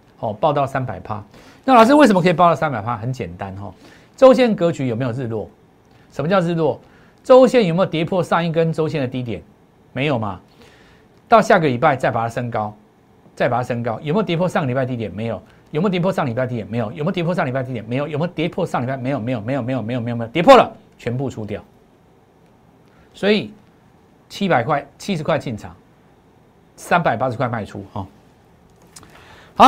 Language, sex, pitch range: Chinese, male, 115-190 Hz